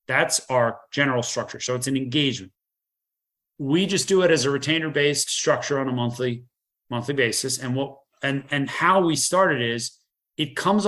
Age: 30-49